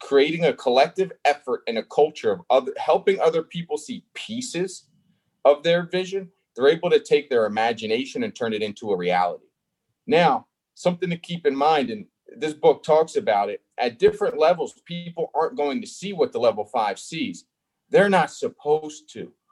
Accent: American